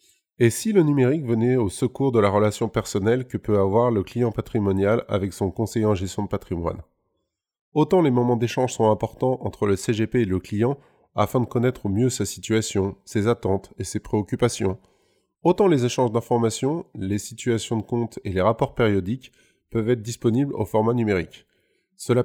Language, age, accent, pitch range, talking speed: French, 20-39, French, 105-130 Hz, 180 wpm